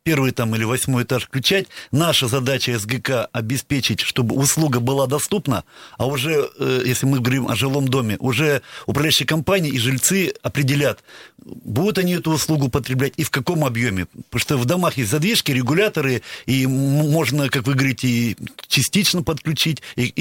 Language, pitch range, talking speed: Russian, 125-150 Hz, 155 wpm